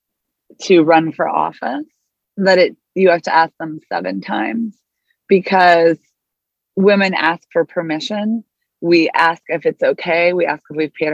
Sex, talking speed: female, 150 wpm